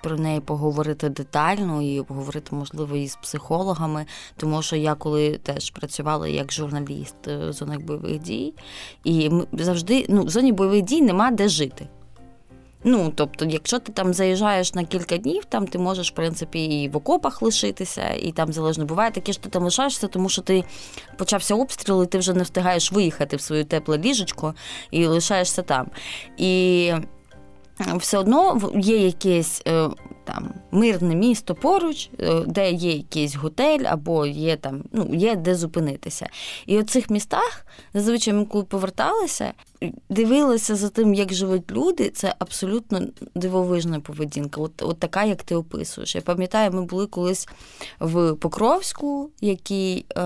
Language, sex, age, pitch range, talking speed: Ukrainian, female, 20-39, 155-205 Hz, 150 wpm